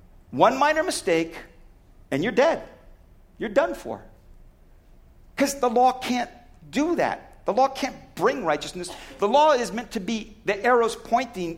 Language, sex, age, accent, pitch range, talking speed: English, male, 50-69, American, 140-205 Hz, 150 wpm